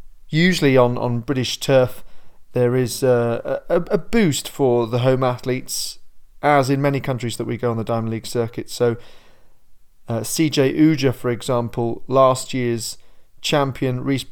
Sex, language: male, English